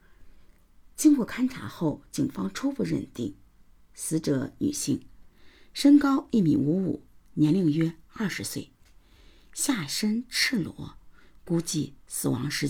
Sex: female